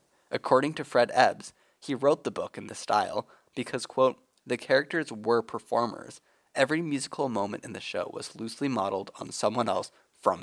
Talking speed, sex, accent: 175 wpm, male, American